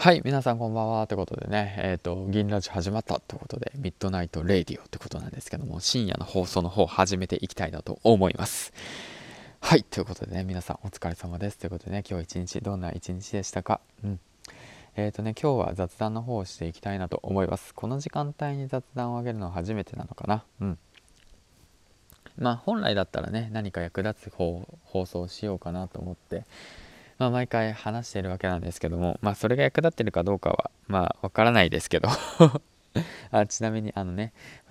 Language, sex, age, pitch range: Japanese, male, 20-39, 90-115 Hz